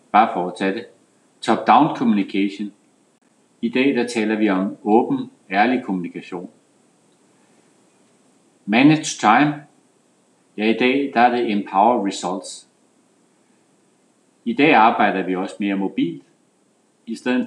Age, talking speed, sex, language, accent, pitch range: 60-79, 120 wpm, male, Danish, native, 100-130 Hz